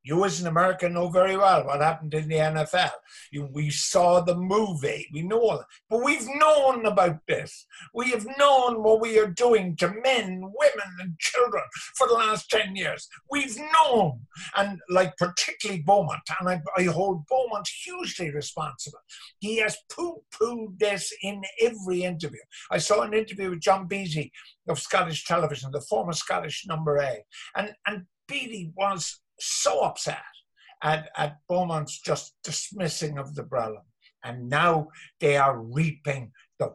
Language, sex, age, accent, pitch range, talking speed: English, male, 50-69, British, 150-210 Hz, 160 wpm